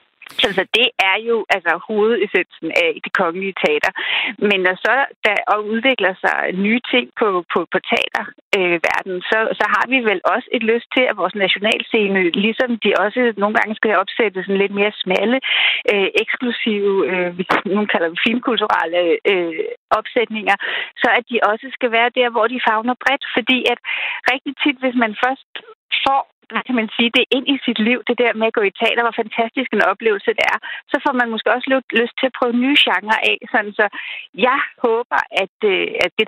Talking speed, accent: 185 wpm, native